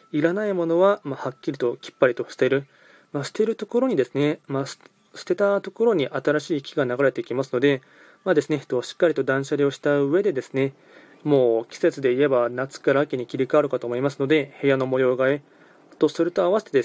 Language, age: Japanese, 20-39